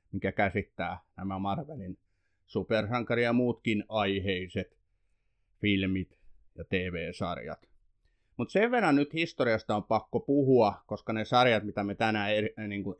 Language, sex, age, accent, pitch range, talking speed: Finnish, male, 30-49, native, 100-125 Hz, 115 wpm